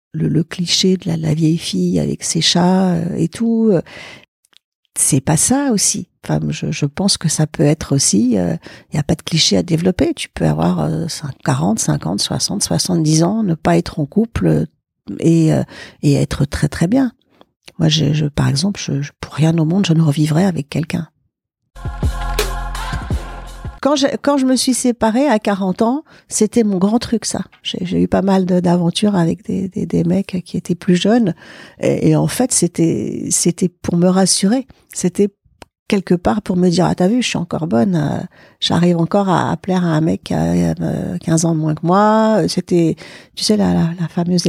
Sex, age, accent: female, 50-69, French